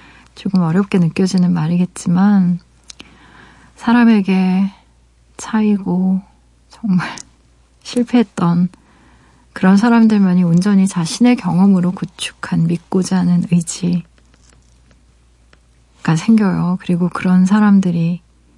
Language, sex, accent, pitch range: Korean, female, native, 175-215 Hz